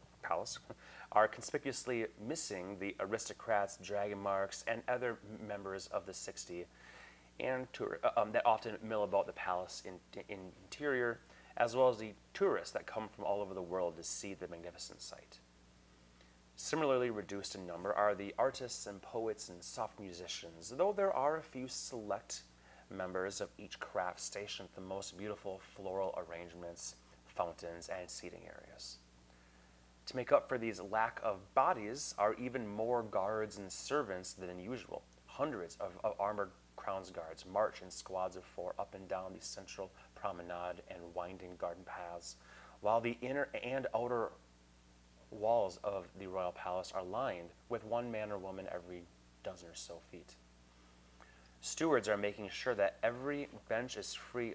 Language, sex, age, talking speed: English, male, 30-49, 160 wpm